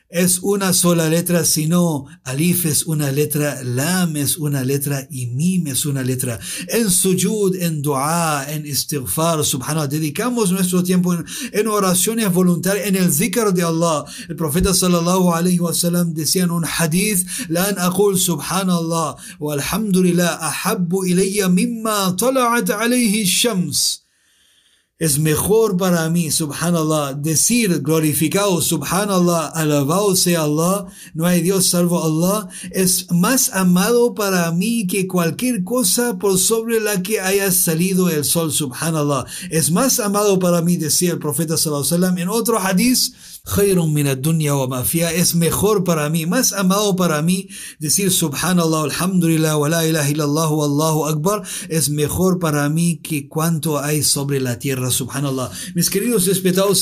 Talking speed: 135 wpm